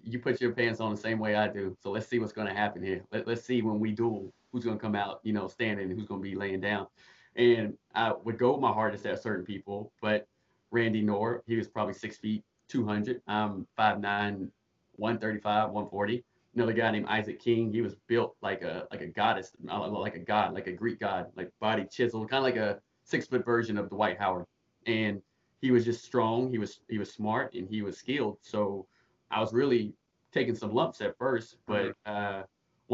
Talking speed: 220 wpm